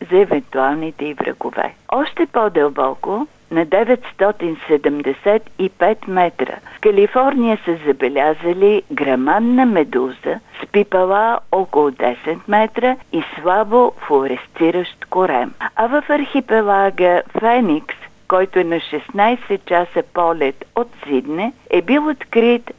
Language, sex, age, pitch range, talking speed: Bulgarian, female, 50-69, 165-235 Hz, 105 wpm